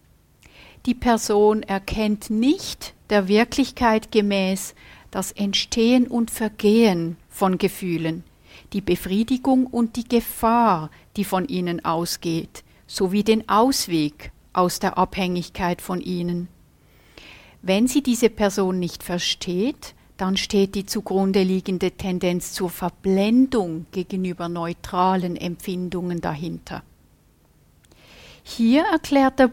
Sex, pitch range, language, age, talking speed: female, 180-225 Hz, English, 50-69, 105 wpm